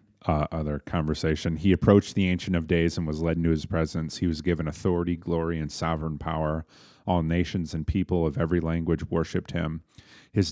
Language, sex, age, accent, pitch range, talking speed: English, male, 30-49, American, 80-100 Hz, 190 wpm